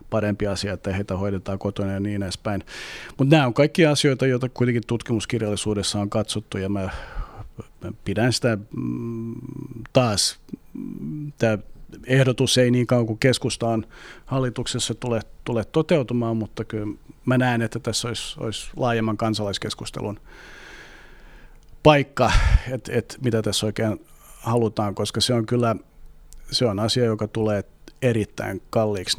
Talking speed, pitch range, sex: 130 wpm, 100-120 Hz, male